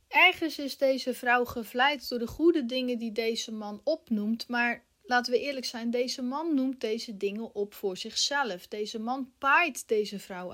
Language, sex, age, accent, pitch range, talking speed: Dutch, female, 30-49, Dutch, 220-275 Hz, 175 wpm